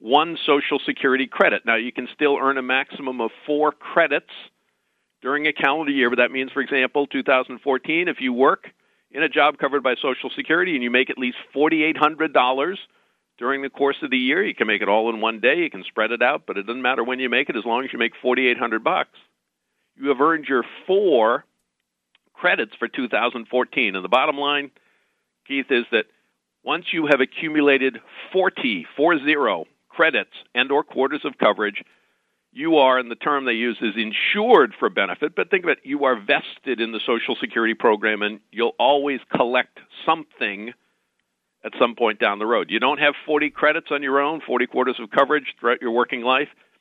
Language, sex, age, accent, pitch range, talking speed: English, male, 50-69, American, 115-150 Hz, 200 wpm